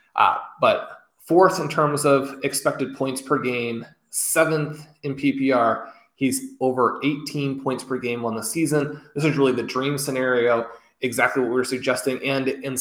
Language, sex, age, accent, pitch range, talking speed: English, male, 20-39, American, 115-140 Hz, 165 wpm